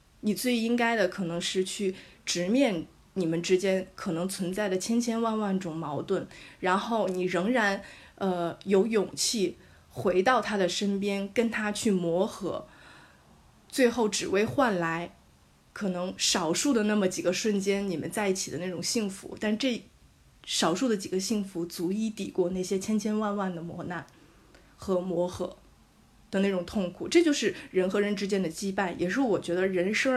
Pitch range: 180-225 Hz